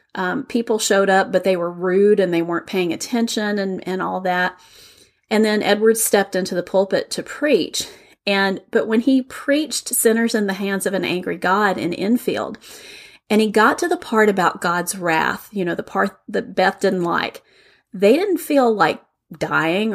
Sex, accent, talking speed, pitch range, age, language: female, American, 190 wpm, 185-225 Hz, 30-49, English